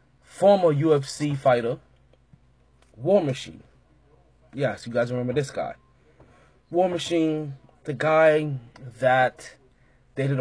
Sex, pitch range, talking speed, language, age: male, 125-150 Hz, 100 wpm, English, 20-39